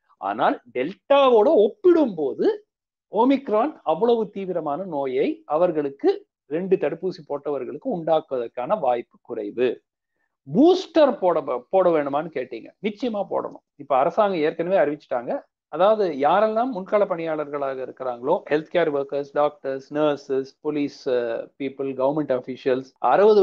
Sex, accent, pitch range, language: male, native, 140-200 Hz, Tamil